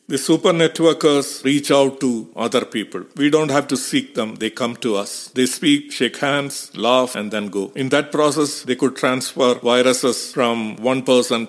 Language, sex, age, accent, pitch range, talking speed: English, male, 50-69, Indian, 120-150 Hz, 190 wpm